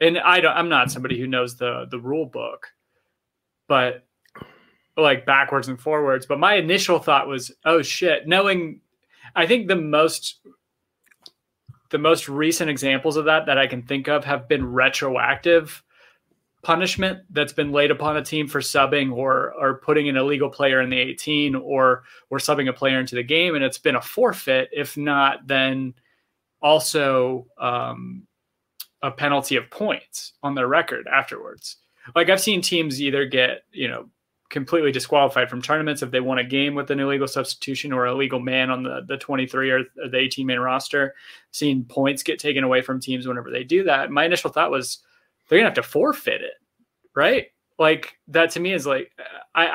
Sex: male